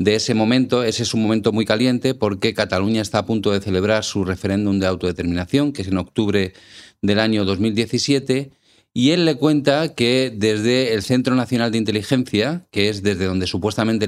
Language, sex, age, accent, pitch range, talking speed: Spanish, male, 40-59, Spanish, 105-130 Hz, 185 wpm